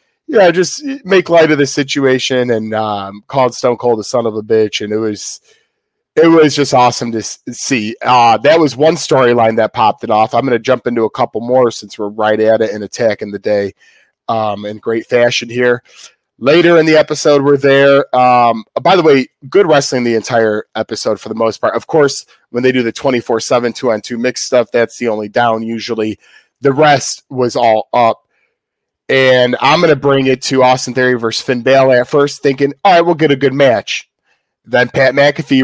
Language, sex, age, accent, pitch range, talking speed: English, male, 30-49, American, 115-145 Hz, 205 wpm